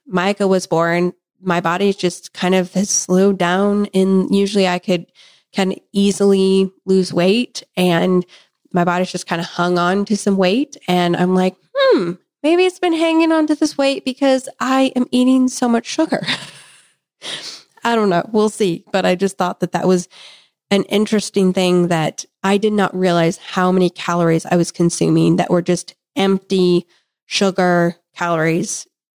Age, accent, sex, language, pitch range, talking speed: 20-39, American, female, English, 180-210 Hz, 170 wpm